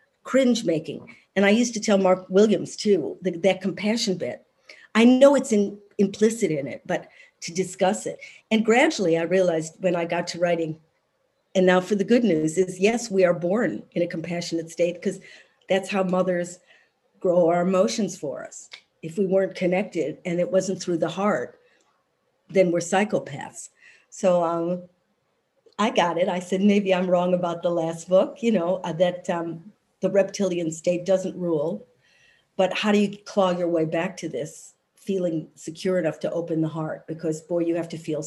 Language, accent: English, American